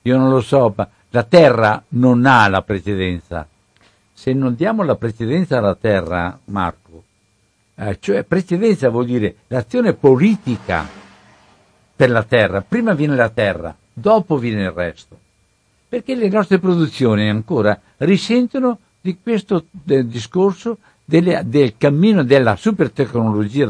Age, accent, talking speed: 60-79, native, 130 wpm